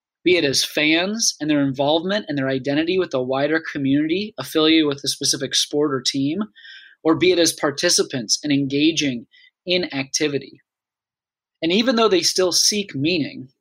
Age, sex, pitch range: 20-39, male, 140-180 Hz